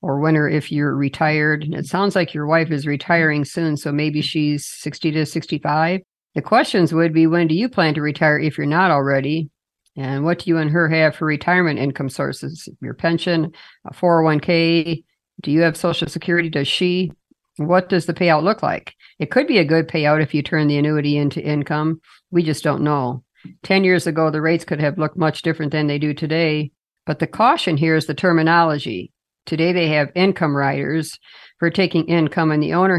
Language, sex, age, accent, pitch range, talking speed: English, female, 50-69, American, 150-175 Hz, 200 wpm